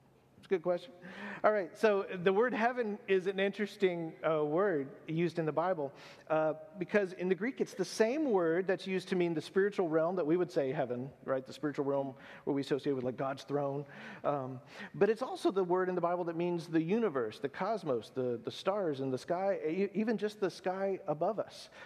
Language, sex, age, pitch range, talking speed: English, male, 40-59, 140-185 Hz, 215 wpm